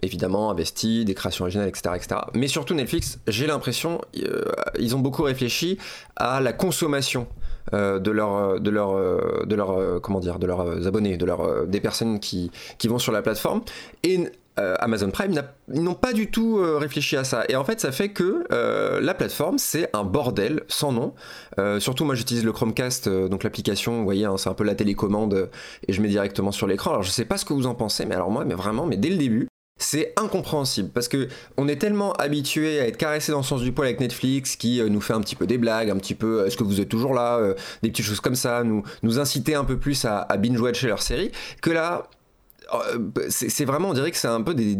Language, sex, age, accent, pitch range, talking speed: French, male, 20-39, French, 105-145 Hz, 235 wpm